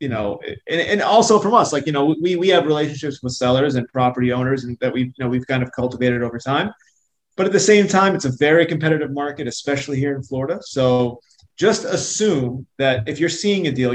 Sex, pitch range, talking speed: male, 125-160 Hz, 230 wpm